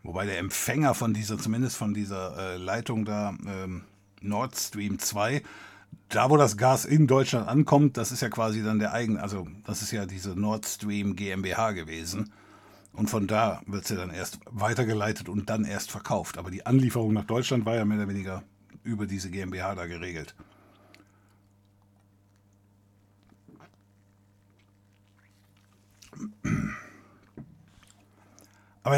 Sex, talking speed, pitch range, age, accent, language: male, 135 wpm, 100-125 Hz, 60-79, German, German